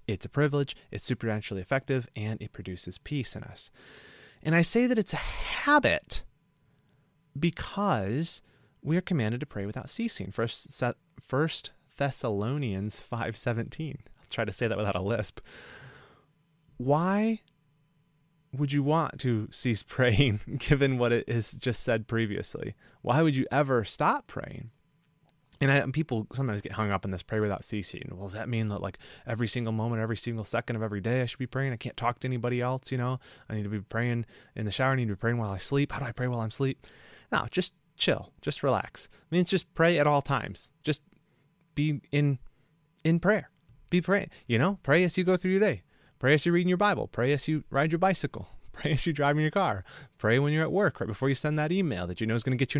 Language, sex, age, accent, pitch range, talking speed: English, male, 30-49, American, 115-160 Hz, 215 wpm